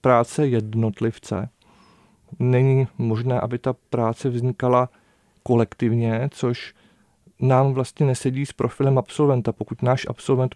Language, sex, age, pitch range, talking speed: Czech, male, 40-59, 120-135 Hz, 110 wpm